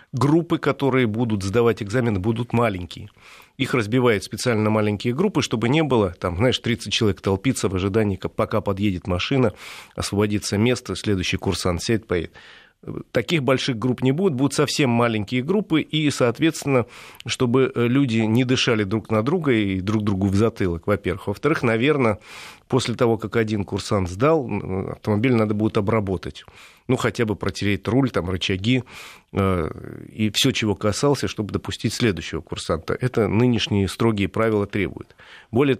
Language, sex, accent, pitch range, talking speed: Russian, male, native, 100-125 Hz, 150 wpm